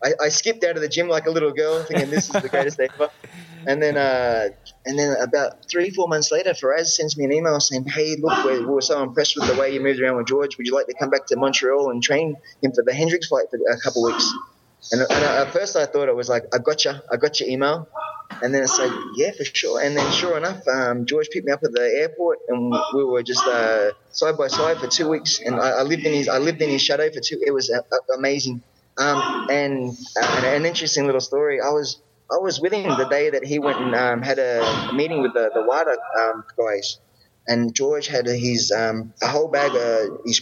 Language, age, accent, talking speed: English, 20-39, Australian, 255 wpm